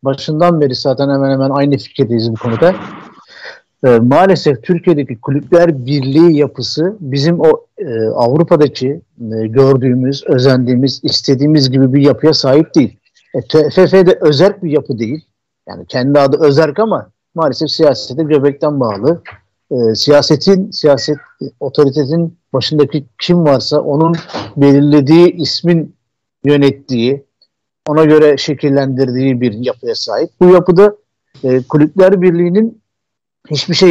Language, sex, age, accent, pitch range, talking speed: Turkish, male, 50-69, native, 135-175 Hz, 120 wpm